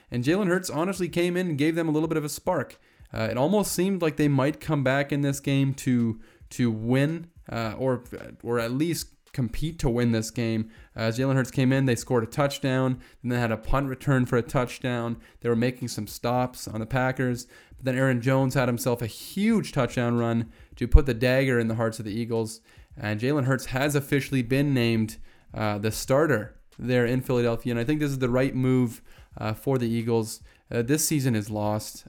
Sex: male